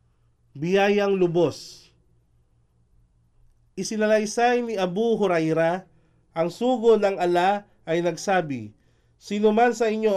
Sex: male